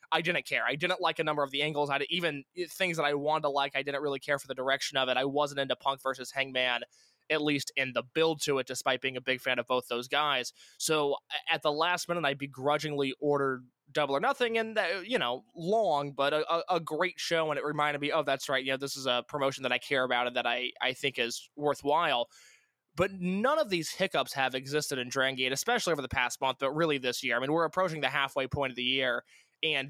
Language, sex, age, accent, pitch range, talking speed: English, male, 20-39, American, 130-170 Hz, 250 wpm